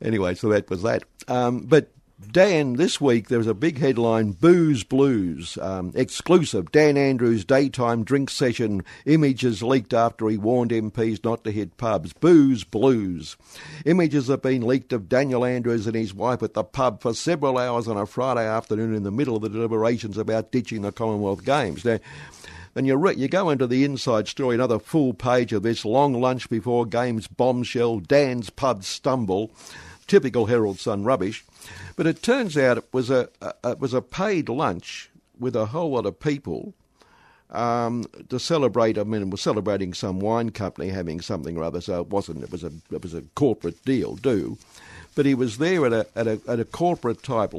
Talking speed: 190 wpm